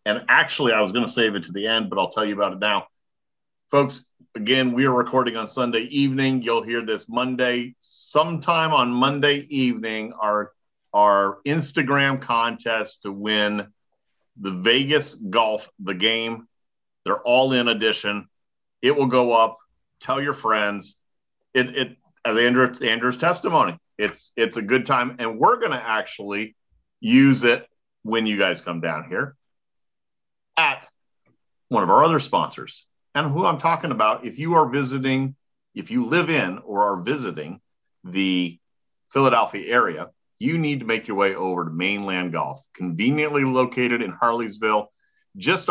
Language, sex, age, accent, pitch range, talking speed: English, male, 40-59, American, 105-140 Hz, 160 wpm